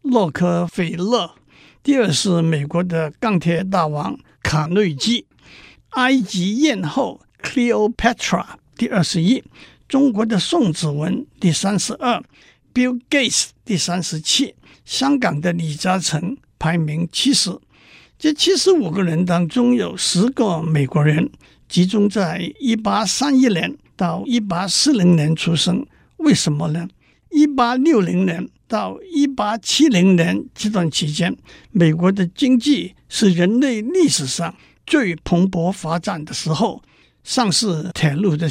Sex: male